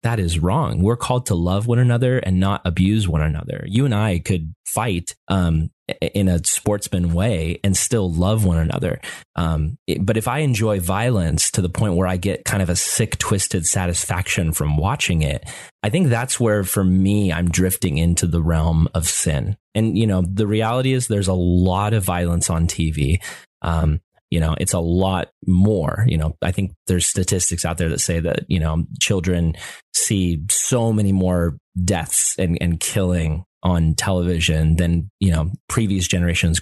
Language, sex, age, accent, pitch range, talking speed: English, male, 30-49, American, 85-110 Hz, 185 wpm